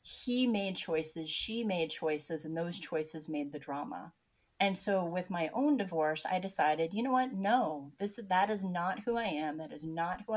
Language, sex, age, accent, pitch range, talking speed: English, female, 30-49, American, 160-195 Hz, 205 wpm